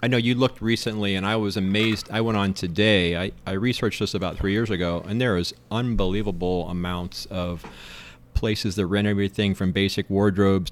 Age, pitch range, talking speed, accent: 40-59, 95-110 Hz, 190 wpm, American